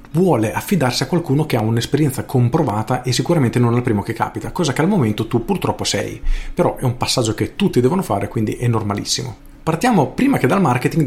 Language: Italian